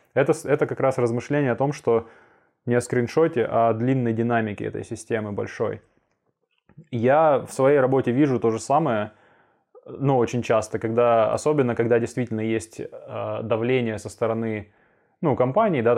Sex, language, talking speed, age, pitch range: male, Russian, 145 wpm, 20-39, 110-135 Hz